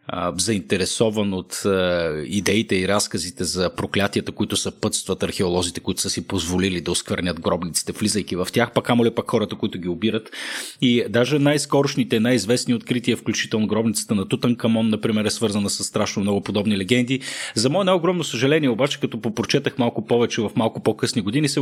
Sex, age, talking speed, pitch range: male, 30-49, 165 wpm, 105-130 Hz